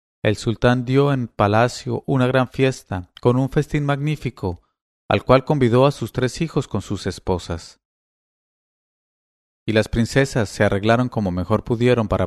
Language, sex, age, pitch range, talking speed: English, male, 30-49, 95-125 Hz, 150 wpm